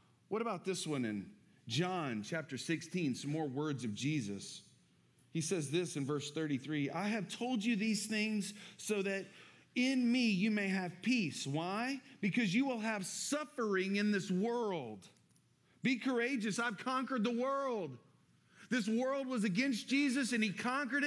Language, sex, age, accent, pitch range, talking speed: English, male, 40-59, American, 145-240 Hz, 160 wpm